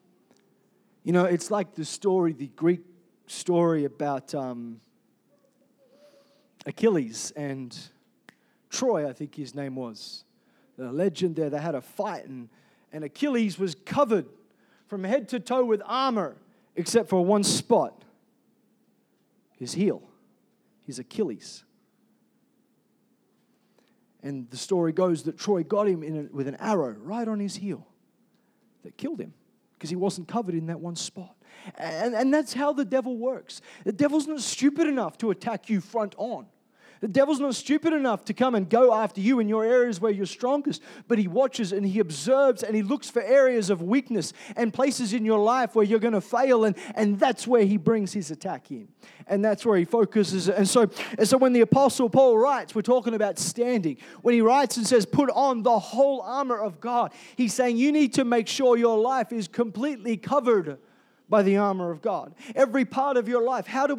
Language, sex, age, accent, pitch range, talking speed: English, male, 40-59, Australian, 190-250 Hz, 180 wpm